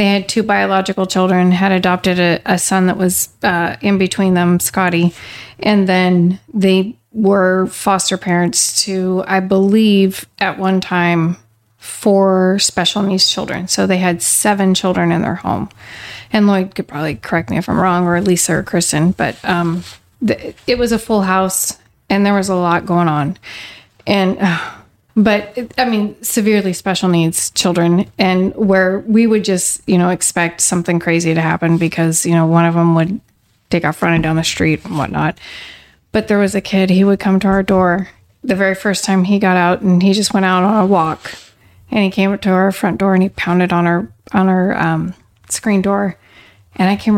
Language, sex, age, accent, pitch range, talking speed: English, female, 30-49, American, 175-200 Hz, 195 wpm